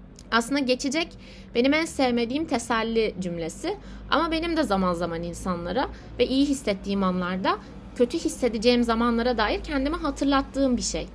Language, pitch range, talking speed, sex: Turkish, 225-275 Hz, 135 wpm, female